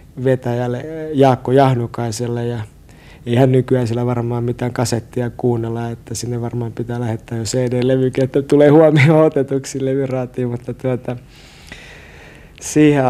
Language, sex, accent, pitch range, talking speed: Finnish, male, native, 120-140 Hz, 120 wpm